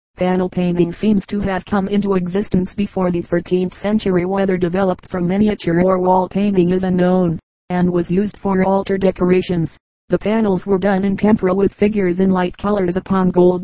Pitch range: 180-195 Hz